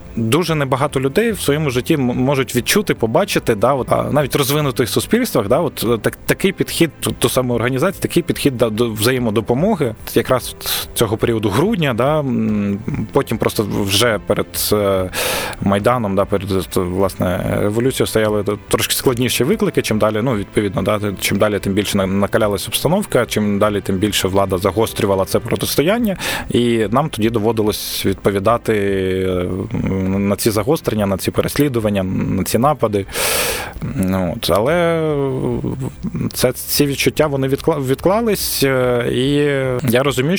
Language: Ukrainian